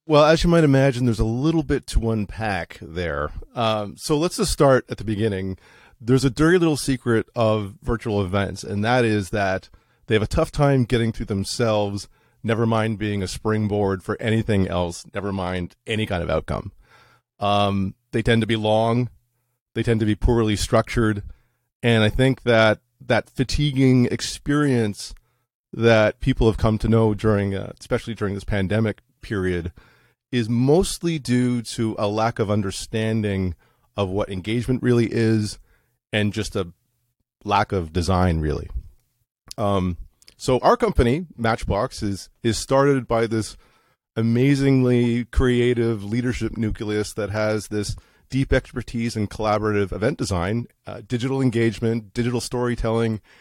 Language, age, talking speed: English, 40-59, 150 wpm